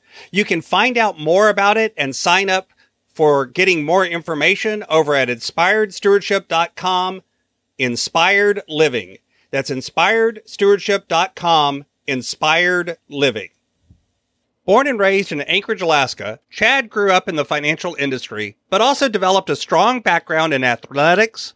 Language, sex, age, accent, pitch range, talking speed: English, male, 40-59, American, 150-210 Hz, 120 wpm